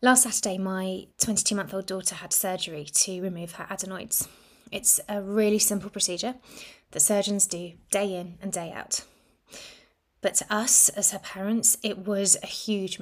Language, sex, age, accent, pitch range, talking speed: English, female, 20-39, British, 190-215 Hz, 165 wpm